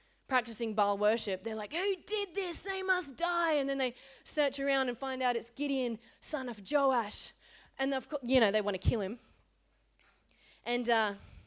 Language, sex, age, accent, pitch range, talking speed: English, female, 20-39, Australian, 230-310 Hz, 180 wpm